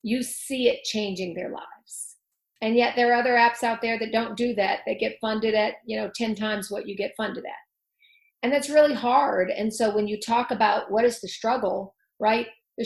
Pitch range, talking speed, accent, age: 200-235 Hz, 220 wpm, American, 40-59